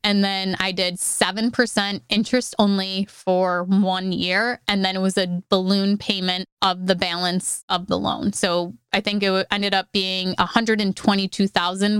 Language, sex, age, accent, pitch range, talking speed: English, female, 20-39, American, 190-215 Hz, 155 wpm